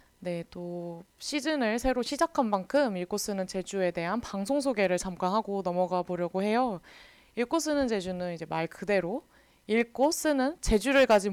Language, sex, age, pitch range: Korean, female, 20-39, 180-245 Hz